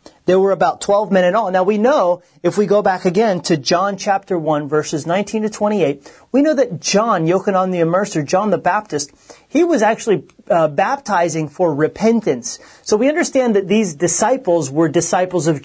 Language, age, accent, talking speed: English, 40-59, American, 190 wpm